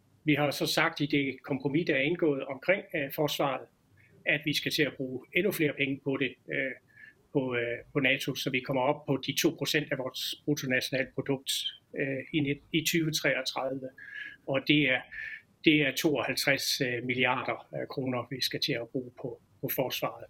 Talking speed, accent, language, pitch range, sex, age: 150 wpm, native, Danish, 135-170 Hz, male, 30-49